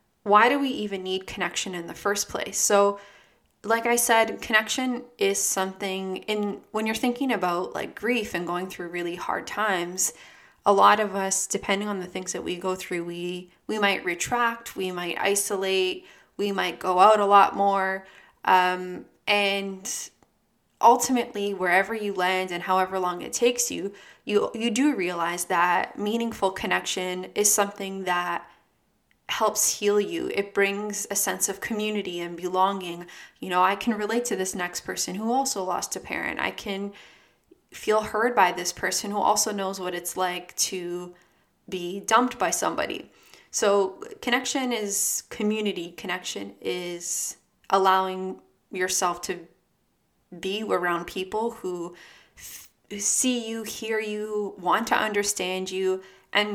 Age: 20-39